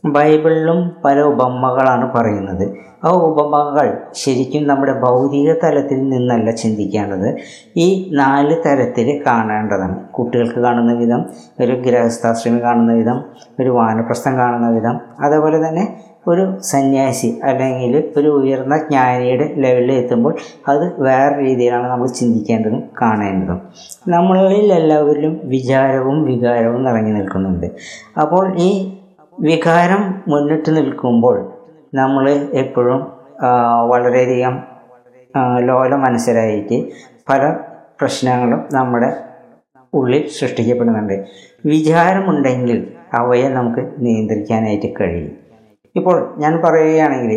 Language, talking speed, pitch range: Malayalam, 90 wpm, 120-145 Hz